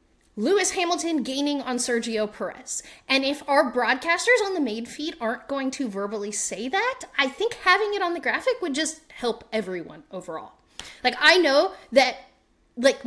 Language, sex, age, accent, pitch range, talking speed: English, female, 20-39, American, 230-345 Hz, 170 wpm